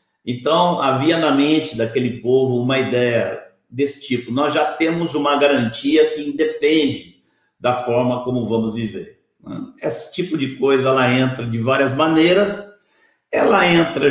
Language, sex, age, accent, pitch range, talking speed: Portuguese, male, 60-79, Brazilian, 125-155 Hz, 140 wpm